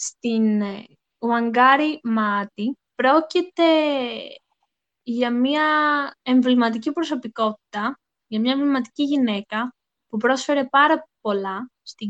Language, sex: Greek, female